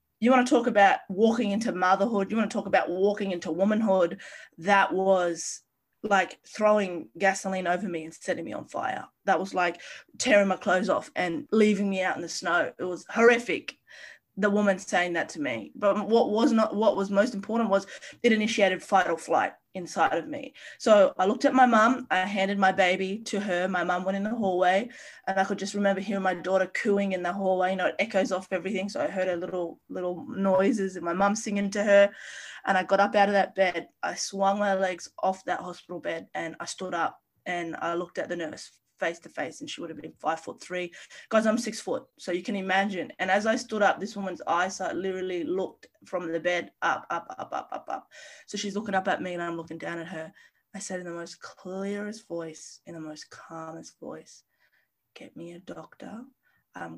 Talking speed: 220 wpm